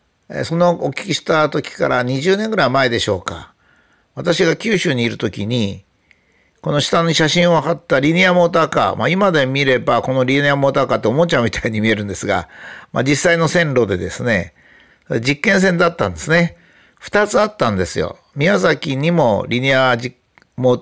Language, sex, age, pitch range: Japanese, male, 50-69, 110-170 Hz